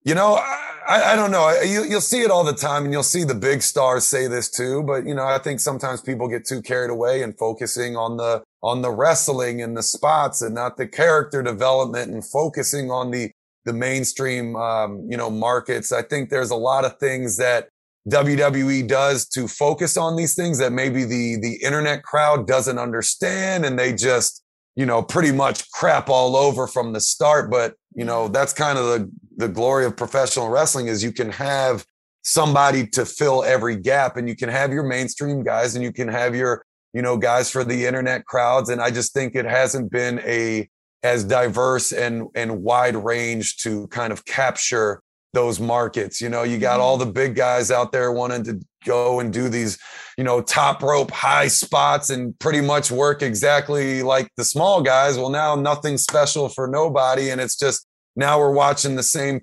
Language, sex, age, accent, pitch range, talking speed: English, male, 30-49, American, 120-140 Hz, 200 wpm